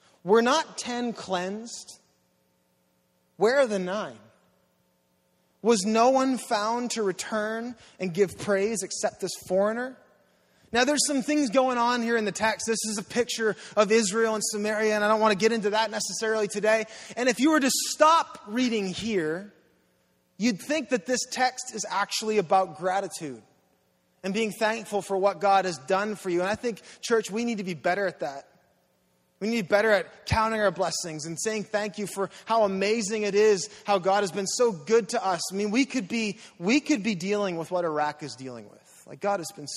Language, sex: English, male